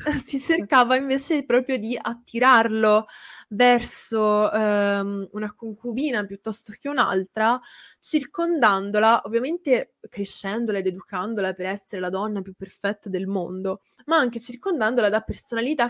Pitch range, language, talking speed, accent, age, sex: 200-250 Hz, Italian, 115 wpm, native, 20-39, female